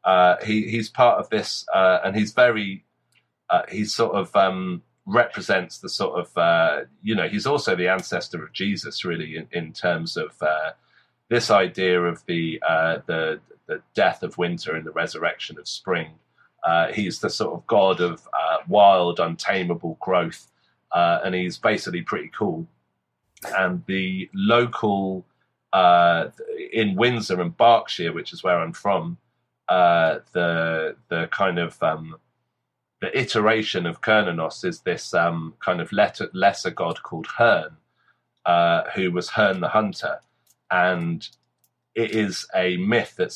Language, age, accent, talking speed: English, 30-49, British, 155 wpm